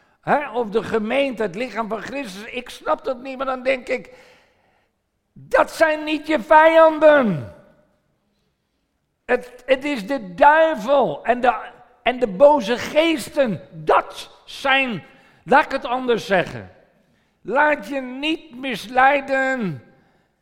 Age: 50-69